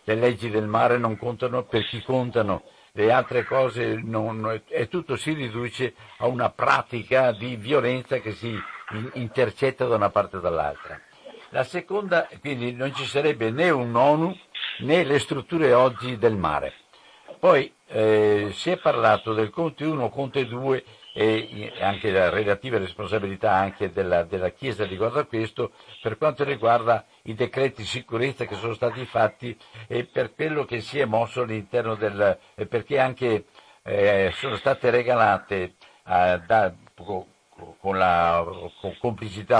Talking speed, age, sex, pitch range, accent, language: 150 wpm, 60-79, male, 110-130 Hz, native, Italian